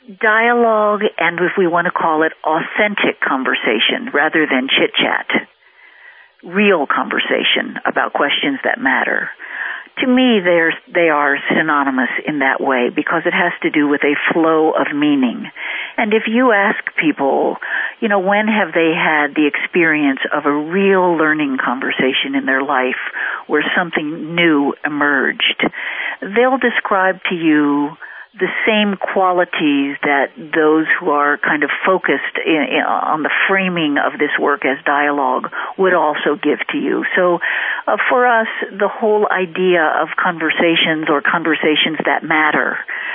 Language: English